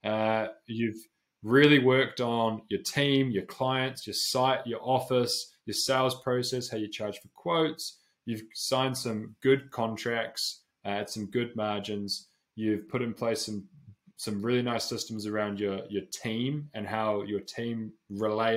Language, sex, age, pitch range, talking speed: English, male, 20-39, 105-130 Hz, 160 wpm